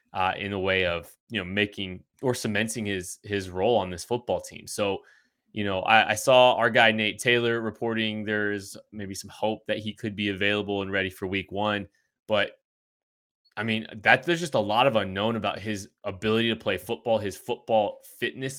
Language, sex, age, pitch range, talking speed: English, male, 20-39, 105-140 Hz, 195 wpm